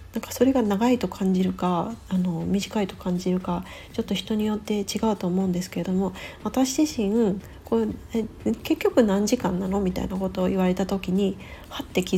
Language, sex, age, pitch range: Japanese, female, 40-59, 190-240 Hz